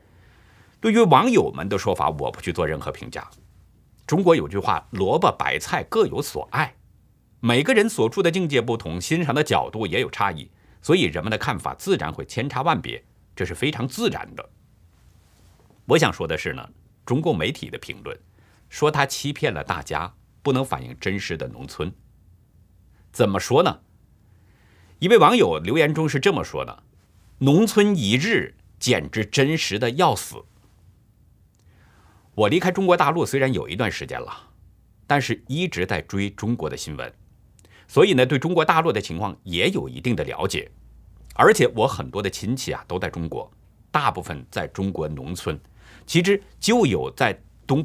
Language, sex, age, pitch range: Chinese, male, 50-69, 95-150 Hz